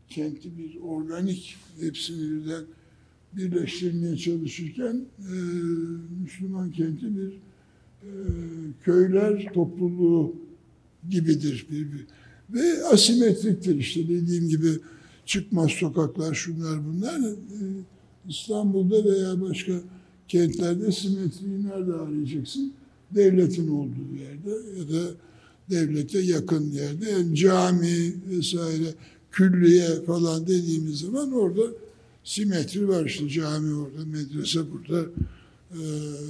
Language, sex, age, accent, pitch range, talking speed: Turkish, male, 60-79, native, 160-195 Hz, 95 wpm